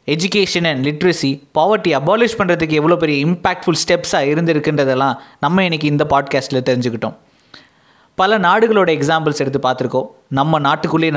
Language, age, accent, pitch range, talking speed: Tamil, 20-39, native, 130-170 Hz, 125 wpm